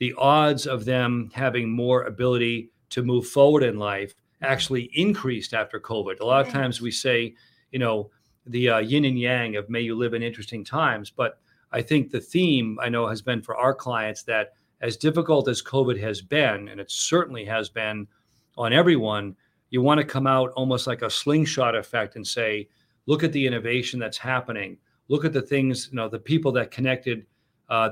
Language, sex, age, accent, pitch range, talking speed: English, male, 40-59, American, 115-135 Hz, 195 wpm